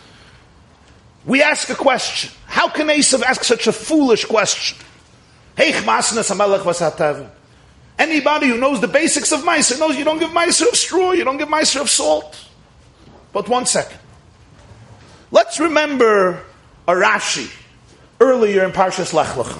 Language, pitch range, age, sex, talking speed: English, 170-235 Hz, 40-59, male, 130 wpm